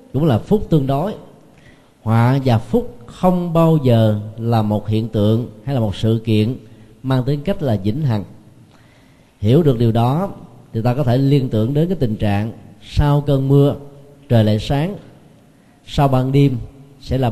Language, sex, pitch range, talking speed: Vietnamese, male, 110-145 Hz, 175 wpm